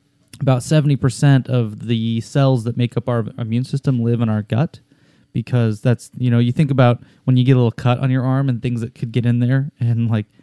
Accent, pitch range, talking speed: American, 120-140 Hz, 230 wpm